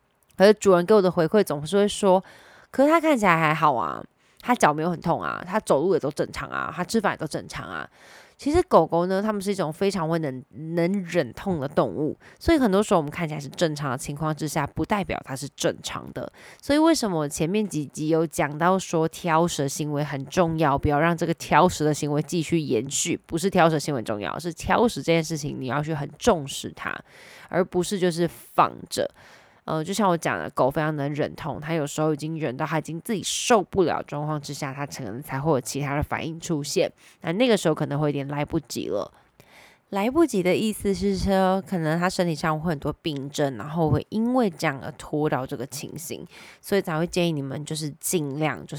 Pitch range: 145-180 Hz